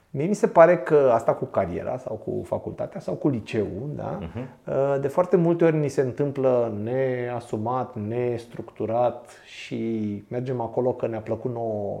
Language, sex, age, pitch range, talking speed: Romanian, male, 30-49, 115-165 Hz, 155 wpm